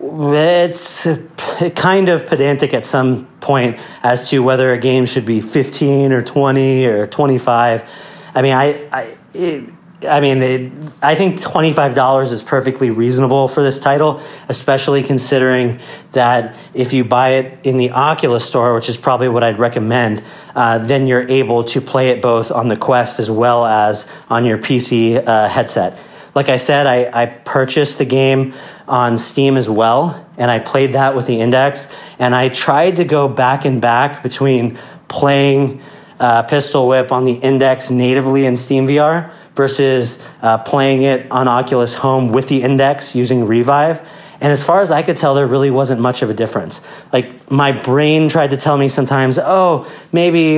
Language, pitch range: English, 125-140 Hz